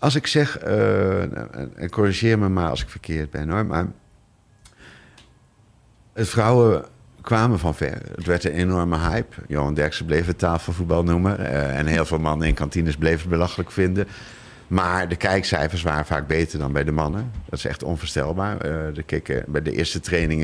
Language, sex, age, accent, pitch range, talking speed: Dutch, male, 50-69, Dutch, 75-95 Hz, 180 wpm